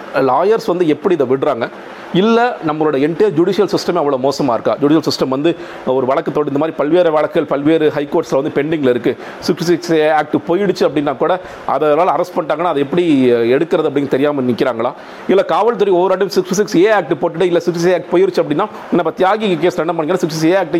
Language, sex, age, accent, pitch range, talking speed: Tamil, male, 40-59, native, 145-185 Hz, 155 wpm